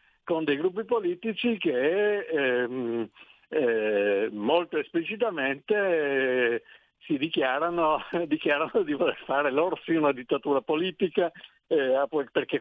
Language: Italian